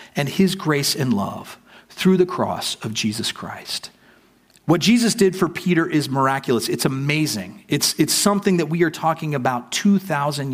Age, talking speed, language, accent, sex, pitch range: 40-59, 165 wpm, English, American, male, 120-170 Hz